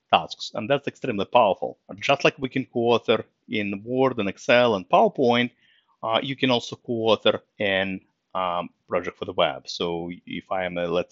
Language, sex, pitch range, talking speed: English, male, 95-130 Hz, 180 wpm